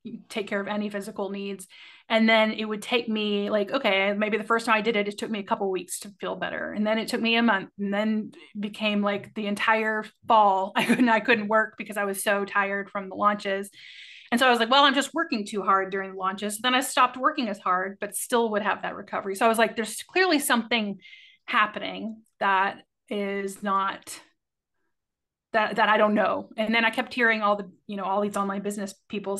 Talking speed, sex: 235 wpm, female